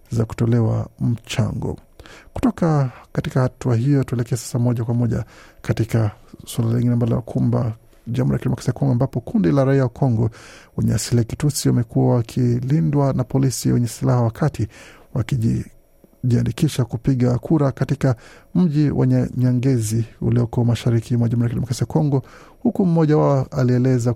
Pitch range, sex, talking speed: 120-135 Hz, male, 130 wpm